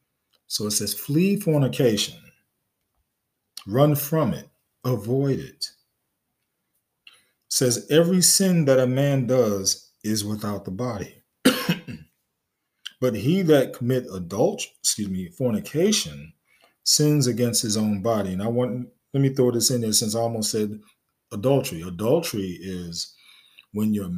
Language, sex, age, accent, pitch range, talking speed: English, male, 40-59, American, 105-130 Hz, 130 wpm